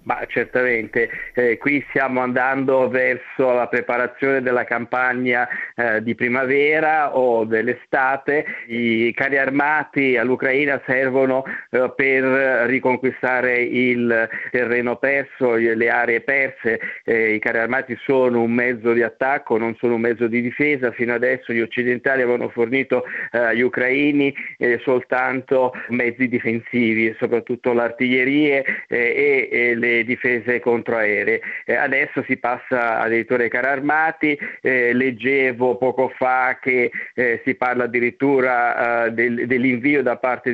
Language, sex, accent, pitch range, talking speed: Italian, male, native, 120-135 Hz, 125 wpm